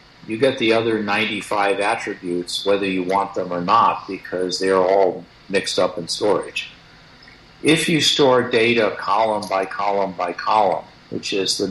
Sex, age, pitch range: male, 50-69, 90-110 Hz